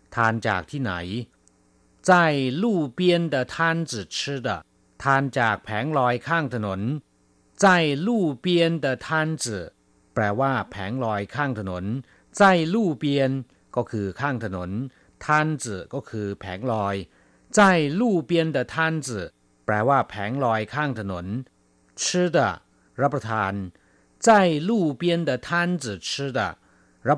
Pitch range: 100-165 Hz